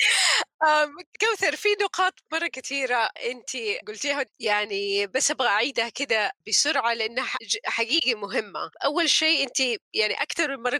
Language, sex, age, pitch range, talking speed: Arabic, female, 30-49, 225-300 Hz, 120 wpm